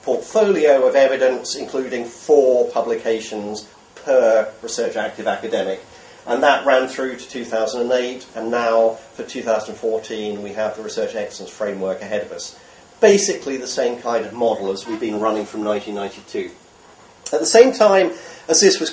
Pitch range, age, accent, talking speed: 115-195 Hz, 40-59, British, 150 wpm